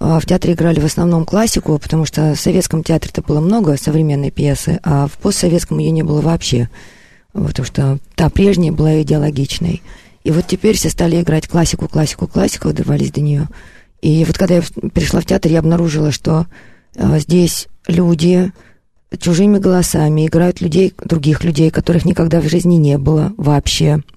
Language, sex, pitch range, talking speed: Russian, female, 145-175 Hz, 165 wpm